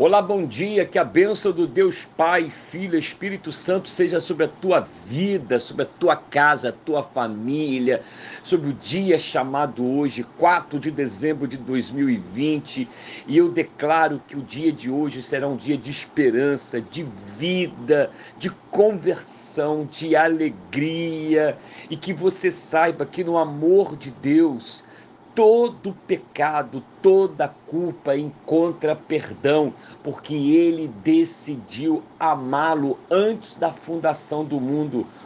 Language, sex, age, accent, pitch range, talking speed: Portuguese, male, 60-79, Brazilian, 145-195 Hz, 135 wpm